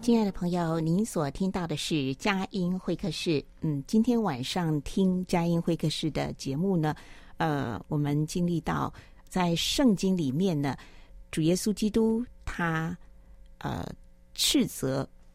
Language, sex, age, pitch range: Chinese, female, 50-69, 140-185 Hz